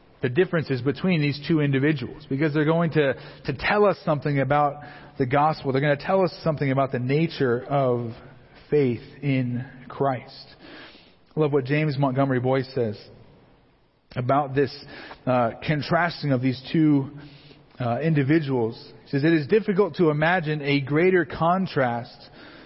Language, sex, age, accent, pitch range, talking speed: English, male, 40-59, American, 140-175 Hz, 150 wpm